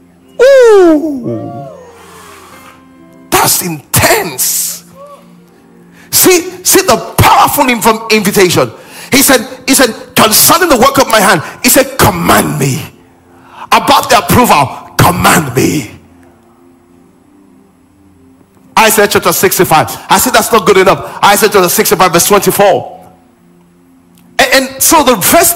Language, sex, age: English, male, 40-59